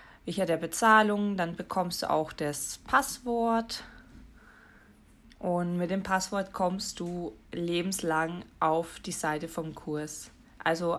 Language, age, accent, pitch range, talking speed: German, 20-39, German, 165-200 Hz, 120 wpm